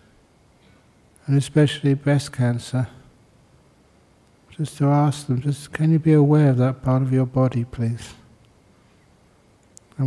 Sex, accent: male, British